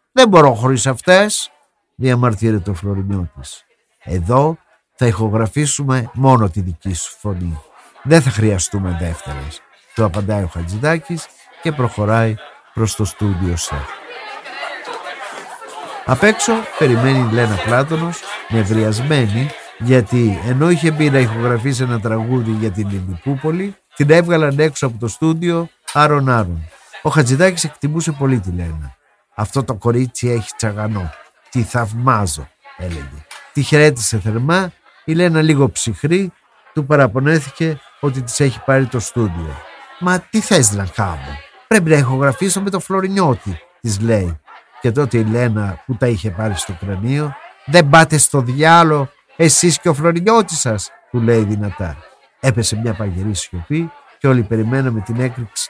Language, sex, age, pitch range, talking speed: Greek, male, 50-69, 105-155 Hz, 135 wpm